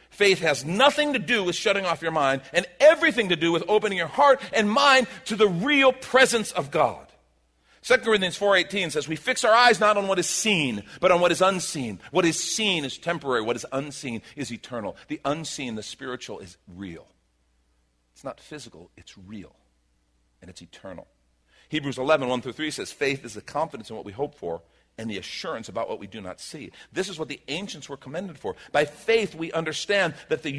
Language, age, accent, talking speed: English, 50-69, American, 200 wpm